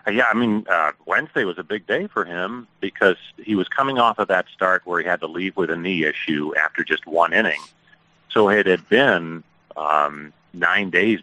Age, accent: 40-59, American